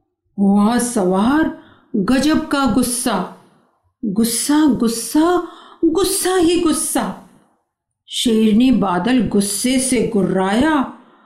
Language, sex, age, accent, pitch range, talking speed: Hindi, female, 50-69, native, 235-330 Hz, 85 wpm